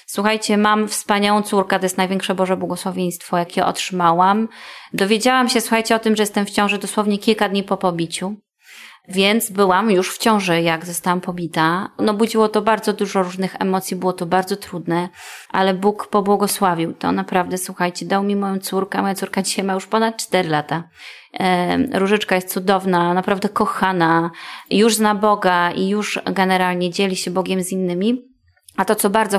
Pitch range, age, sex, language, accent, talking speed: 185-210 Hz, 20-39, female, Polish, native, 165 wpm